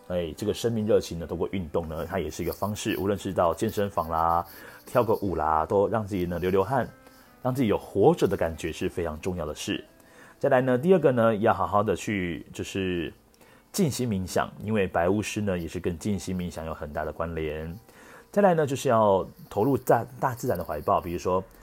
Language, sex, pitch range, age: Chinese, male, 85-110 Hz, 30-49